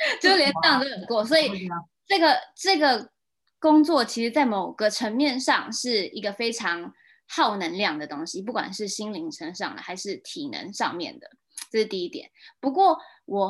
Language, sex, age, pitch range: Chinese, female, 20-39, 190-270 Hz